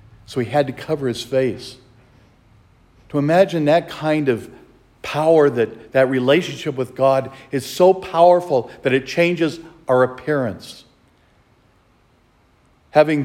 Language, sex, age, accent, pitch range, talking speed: English, male, 50-69, American, 115-145 Hz, 120 wpm